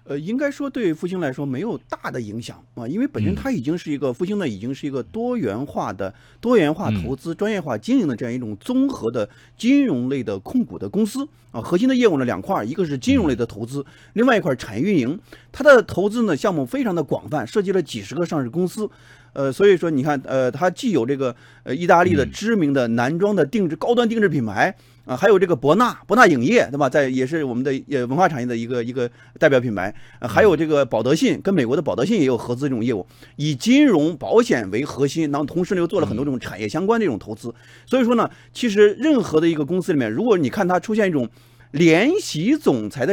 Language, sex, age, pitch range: Chinese, male, 30-49, 130-210 Hz